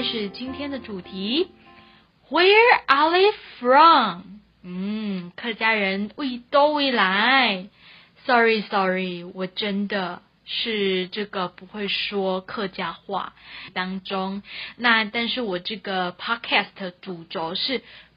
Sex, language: female, Chinese